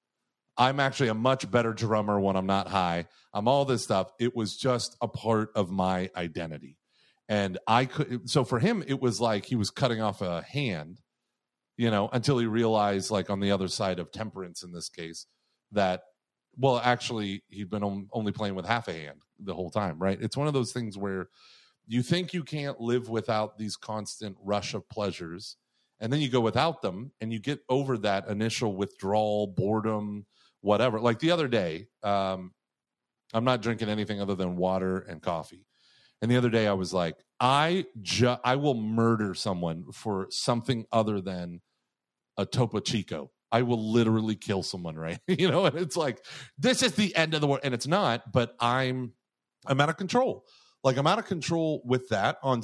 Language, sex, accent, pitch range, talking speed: English, male, American, 100-130 Hz, 190 wpm